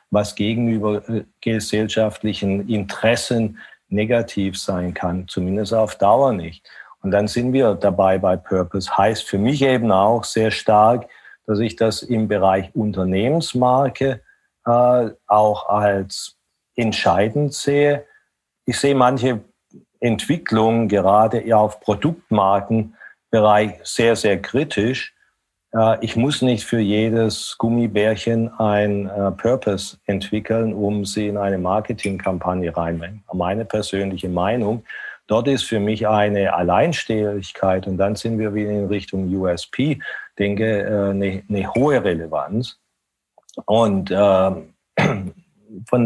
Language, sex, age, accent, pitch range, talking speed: German, male, 50-69, German, 100-120 Hz, 110 wpm